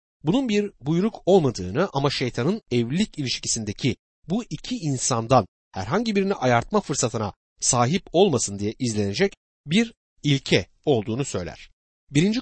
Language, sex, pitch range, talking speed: Turkish, male, 110-175 Hz, 115 wpm